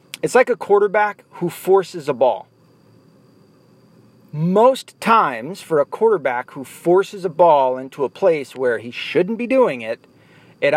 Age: 40-59